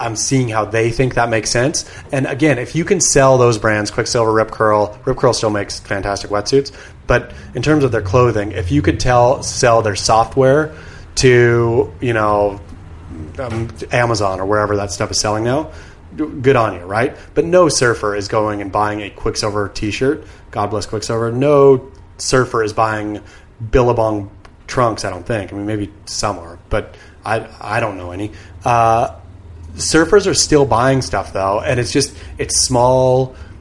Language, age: English, 30-49